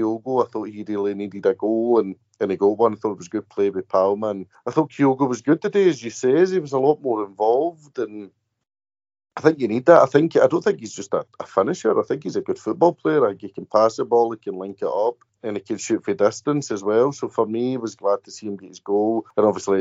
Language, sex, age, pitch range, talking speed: English, male, 30-49, 100-125 Hz, 280 wpm